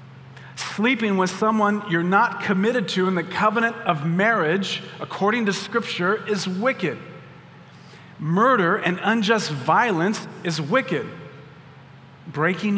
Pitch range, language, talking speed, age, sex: 155-195 Hz, English, 115 wpm, 40-59, male